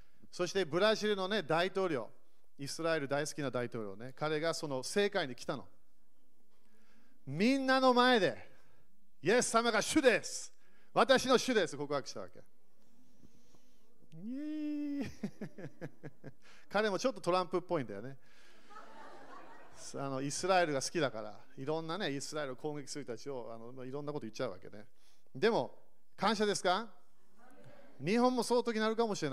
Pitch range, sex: 140-205 Hz, male